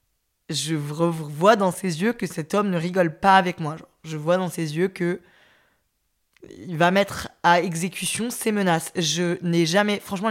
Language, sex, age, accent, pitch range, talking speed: French, female, 20-39, French, 170-210 Hz, 170 wpm